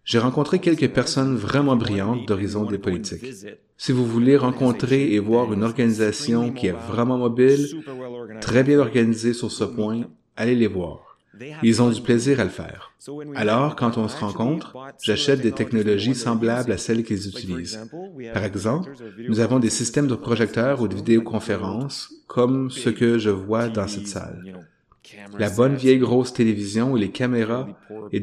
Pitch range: 110-130 Hz